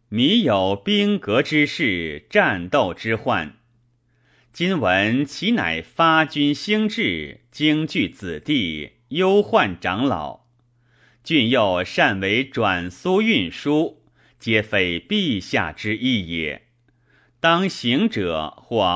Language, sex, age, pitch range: Chinese, male, 30-49, 105-165 Hz